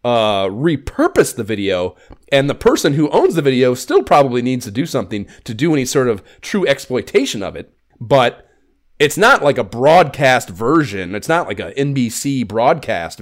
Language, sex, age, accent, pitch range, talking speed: English, male, 30-49, American, 95-130 Hz, 175 wpm